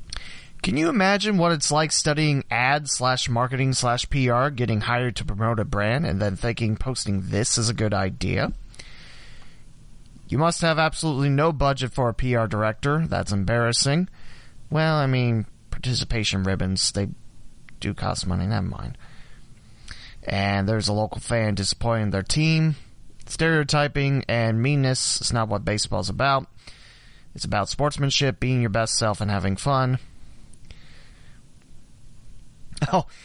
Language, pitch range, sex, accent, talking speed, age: English, 105-145 Hz, male, American, 140 wpm, 30-49